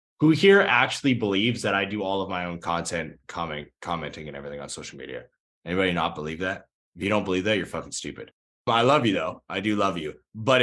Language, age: English, 20-39